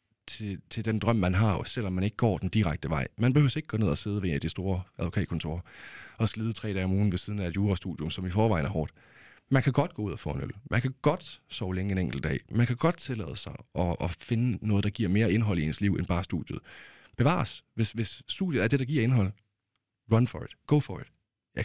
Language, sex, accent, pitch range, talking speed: Danish, male, native, 95-115 Hz, 260 wpm